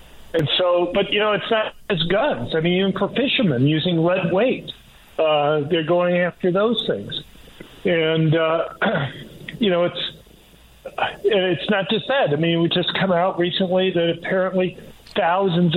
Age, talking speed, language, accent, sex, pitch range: 50-69, 160 wpm, English, American, male, 155-180 Hz